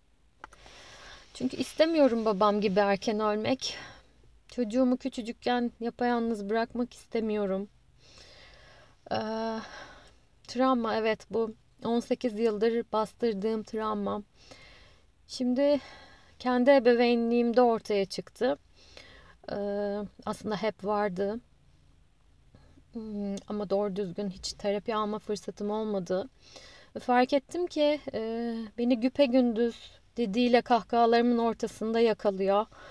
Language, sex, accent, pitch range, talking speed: Turkish, female, native, 215-250 Hz, 90 wpm